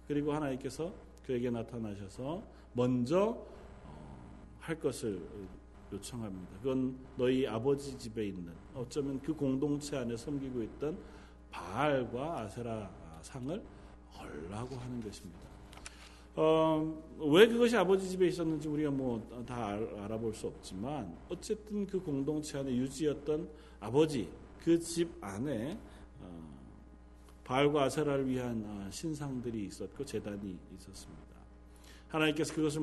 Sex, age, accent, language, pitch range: male, 40-59, native, Korean, 100-155 Hz